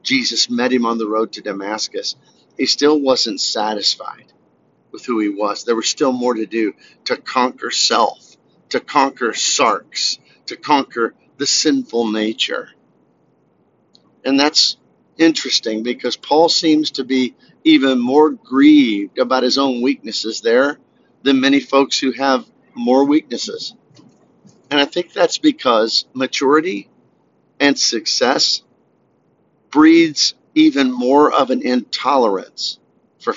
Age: 50-69